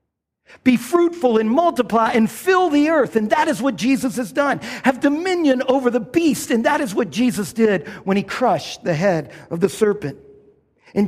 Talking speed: 190 wpm